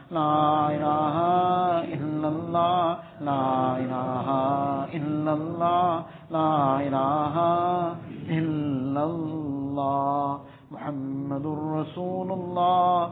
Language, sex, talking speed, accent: English, male, 45 wpm, Indian